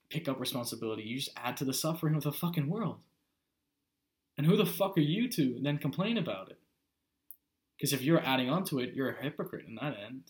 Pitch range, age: 115-145 Hz, 20-39